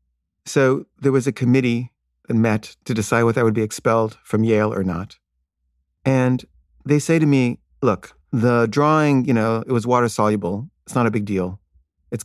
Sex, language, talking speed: male, English, 185 wpm